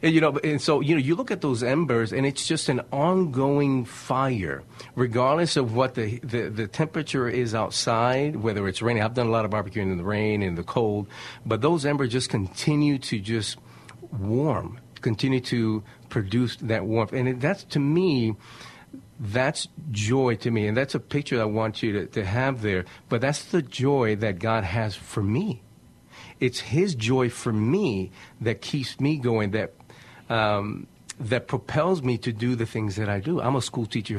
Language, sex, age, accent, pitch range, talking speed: English, male, 40-59, American, 110-135 Hz, 190 wpm